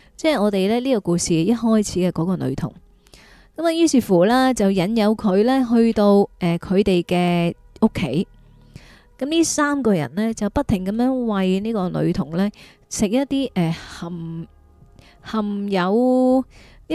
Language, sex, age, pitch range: Chinese, female, 20-39, 170-230 Hz